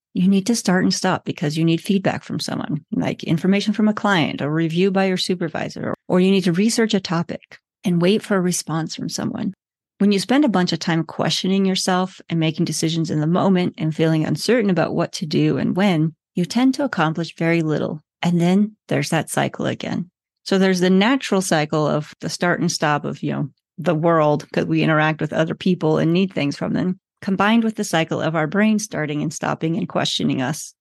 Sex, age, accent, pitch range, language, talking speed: female, 30-49, American, 160-200 Hz, English, 215 wpm